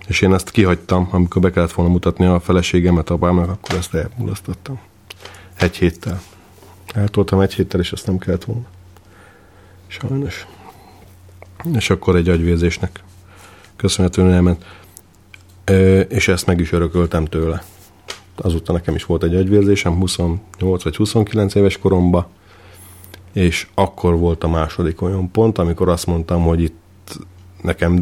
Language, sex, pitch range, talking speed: Hungarian, male, 85-100 Hz, 130 wpm